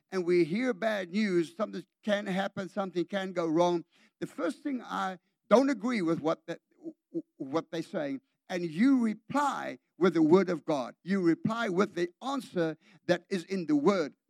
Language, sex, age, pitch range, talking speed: English, male, 60-79, 175-255 Hz, 175 wpm